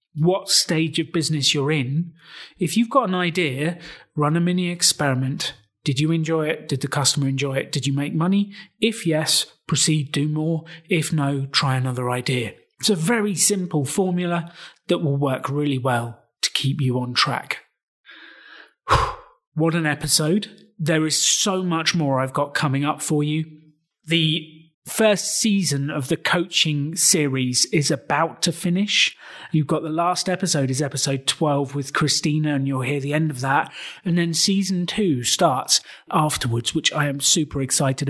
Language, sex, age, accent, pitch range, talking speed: English, male, 30-49, British, 145-180 Hz, 165 wpm